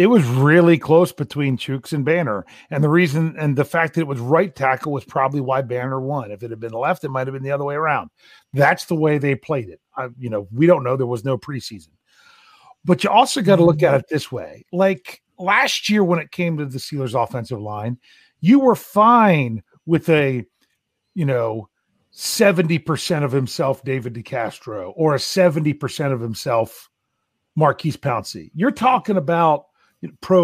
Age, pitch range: 40-59, 130-185 Hz